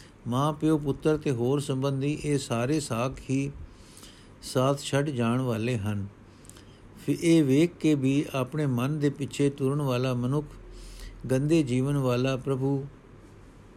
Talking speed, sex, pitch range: 130 wpm, male, 120-145 Hz